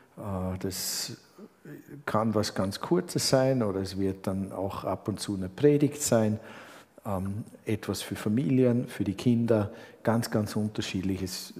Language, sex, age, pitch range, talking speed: German, male, 50-69, 100-130 Hz, 135 wpm